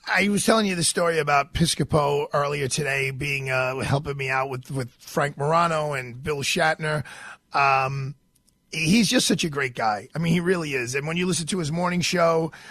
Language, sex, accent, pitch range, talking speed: English, male, American, 145-190 Hz, 200 wpm